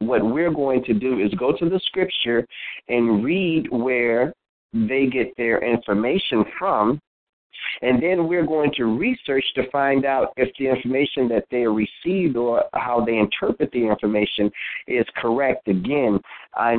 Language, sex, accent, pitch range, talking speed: English, male, American, 120-140 Hz, 155 wpm